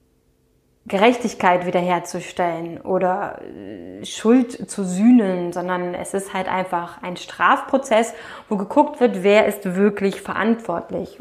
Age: 20-39